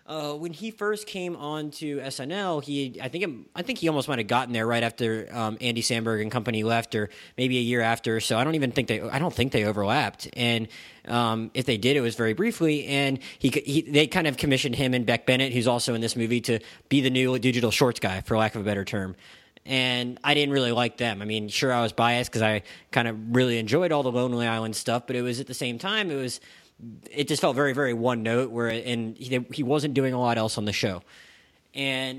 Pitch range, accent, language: 115-140 Hz, American, English